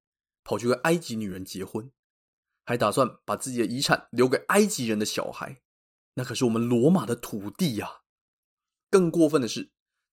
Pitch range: 105-170 Hz